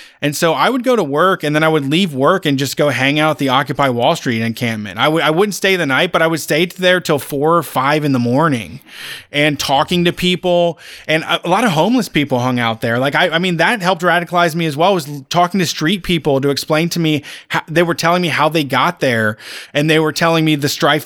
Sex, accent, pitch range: male, American, 145-180 Hz